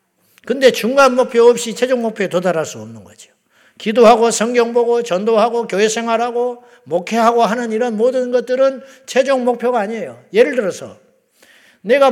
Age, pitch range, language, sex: 50-69, 215-260 Hz, Korean, male